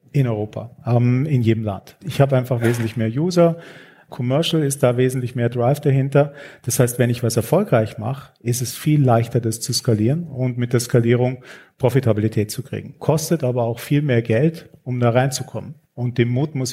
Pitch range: 120-140 Hz